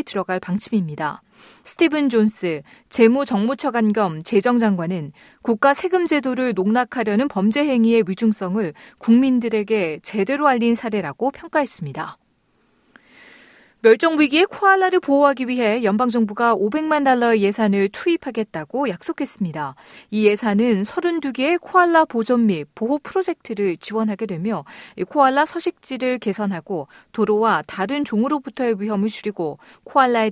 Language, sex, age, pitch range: Korean, female, 40-59, 205-280 Hz